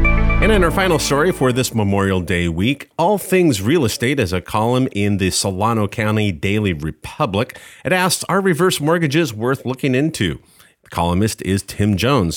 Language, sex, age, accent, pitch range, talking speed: English, male, 40-59, American, 90-130 Hz, 170 wpm